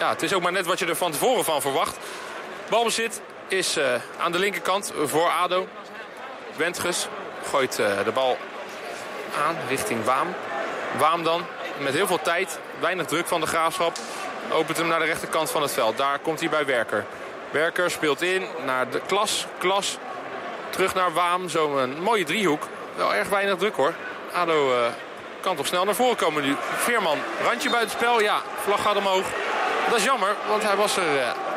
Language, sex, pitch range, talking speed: Dutch, male, 155-195 Hz, 185 wpm